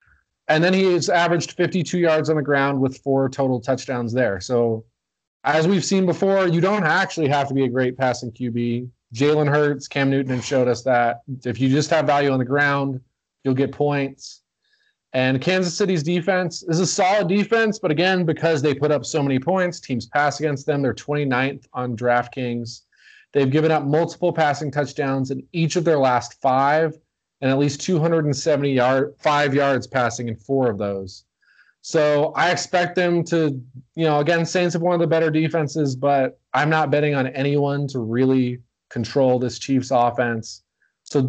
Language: English